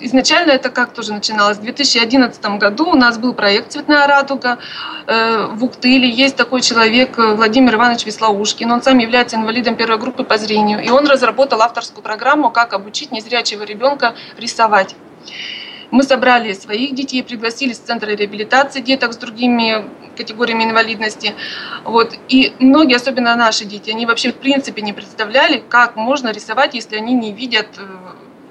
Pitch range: 220-265 Hz